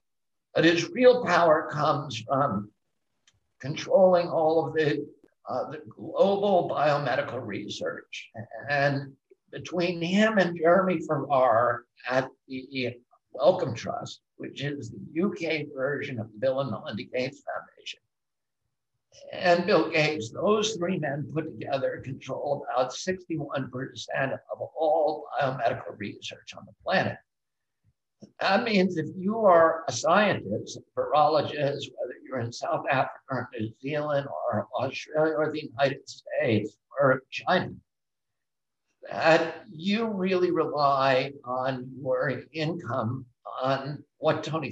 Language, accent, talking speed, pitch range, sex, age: English, American, 120 wpm, 135-170 Hz, male, 60-79